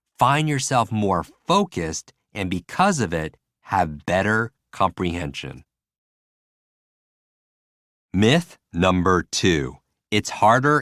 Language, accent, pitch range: English, American, 80-115 Hz